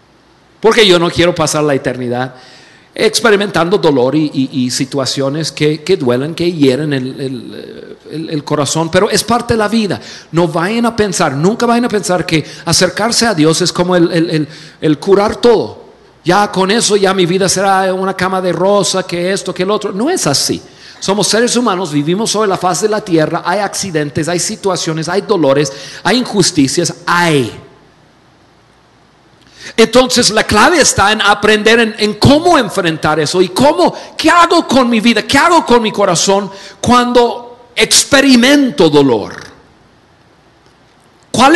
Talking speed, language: 165 wpm, Spanish